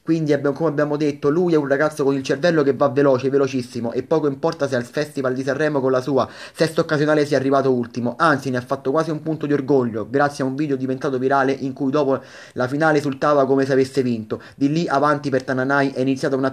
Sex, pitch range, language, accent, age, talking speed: male, 130-150 Hz, Italian, native, 30-49, 230 wpm